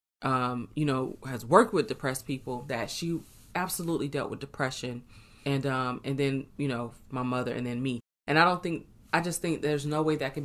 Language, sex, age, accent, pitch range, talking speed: English, female, 20-39, American, 130-155 Hz, 210 wpm